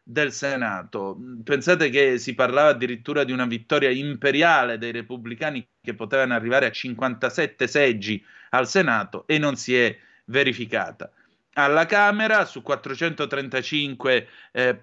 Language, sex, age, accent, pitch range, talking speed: Italian, male, 30-49, native, 120-155 Hz, 125 wpm